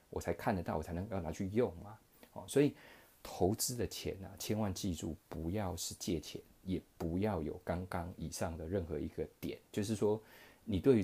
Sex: male